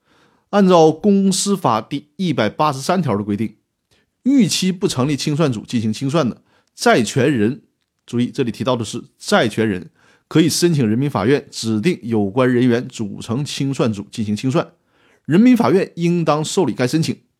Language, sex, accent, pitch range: Chinese, male, native, 115-175 Hz